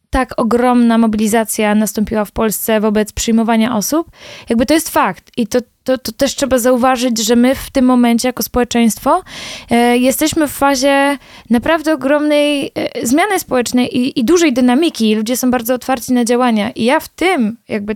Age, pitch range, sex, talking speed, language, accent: 20-39, 235-270 Hz, female, 170 wpm, Polish, native